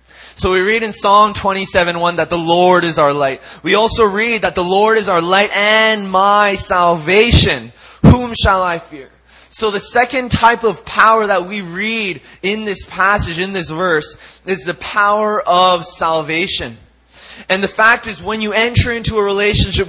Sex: male